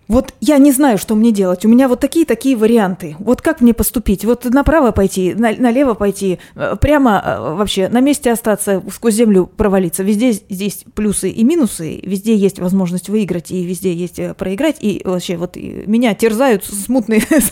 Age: 20-39